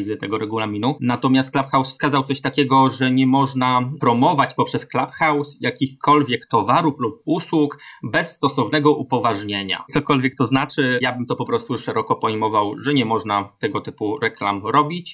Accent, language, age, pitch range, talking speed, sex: native, Polish, 20-39, 115-145 Hz, 145 wpm, male